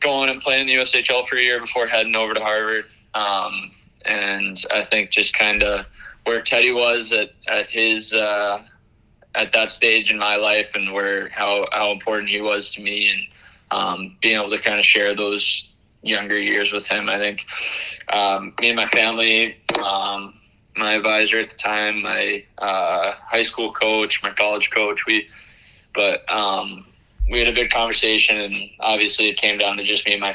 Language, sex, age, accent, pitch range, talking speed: English, male, 20-39, American, 100-110 Hz, 190 wpm